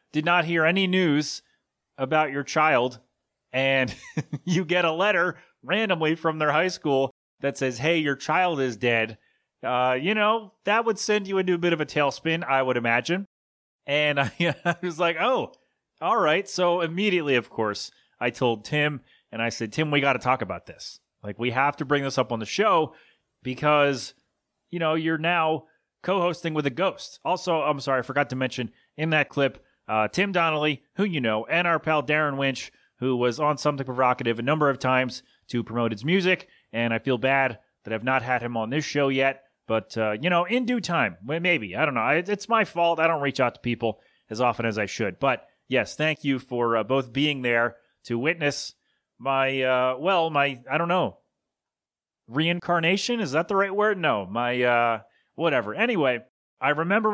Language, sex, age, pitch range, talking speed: English, male, 30-49, 125-170 Hz, 195 wpm